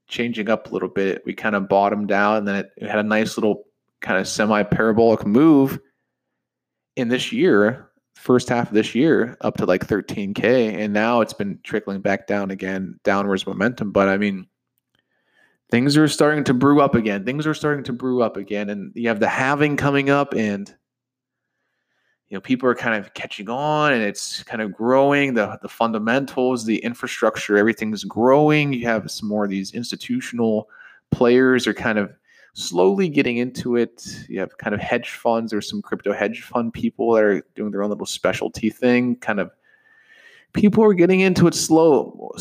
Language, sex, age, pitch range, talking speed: English, male, 30-49, 105-140 Hz, 190 wpm